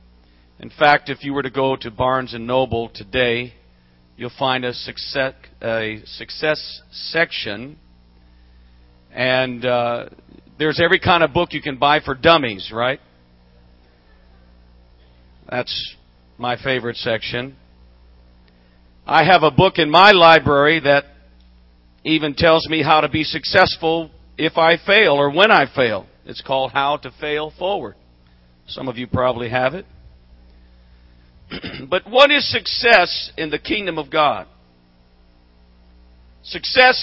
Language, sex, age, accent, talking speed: English, male, 50-69, American, 125 wpm